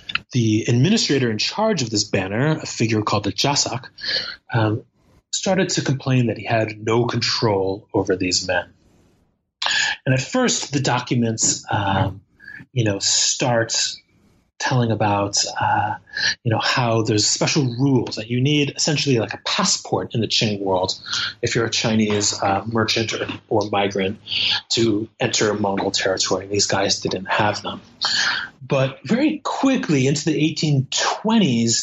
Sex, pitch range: male, 105-140 Hz